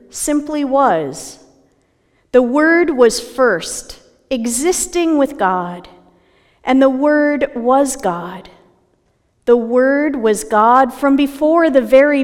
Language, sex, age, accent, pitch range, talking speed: English, female, 40-59, American, 205-280 Hz, 110 wpm